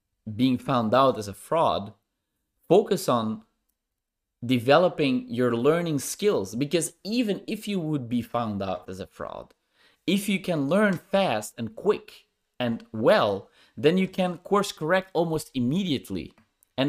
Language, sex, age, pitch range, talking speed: English, male, 30-49, 120-165 Hz, 140 wpm